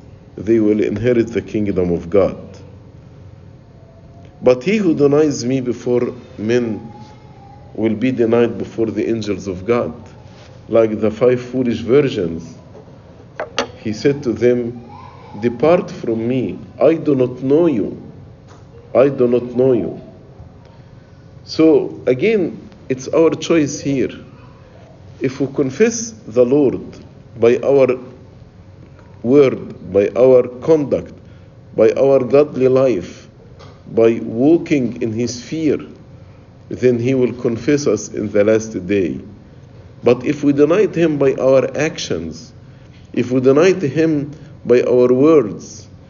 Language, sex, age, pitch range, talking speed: English, male, 50-69, 110-135 Hz, 120 wpm